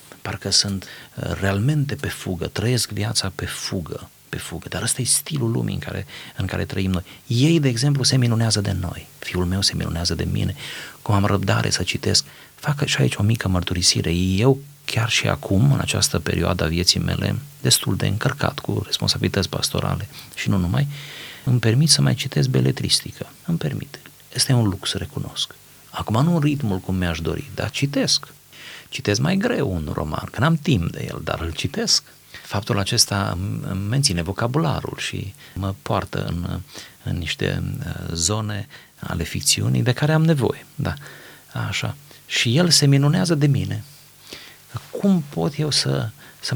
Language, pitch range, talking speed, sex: Romanian, 95-140 Hz, 165 wpm, male